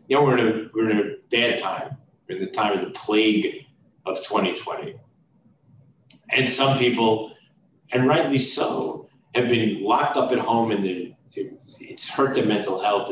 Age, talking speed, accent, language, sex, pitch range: 40-59, 170 wpm, American, English, male, 105-125 Hz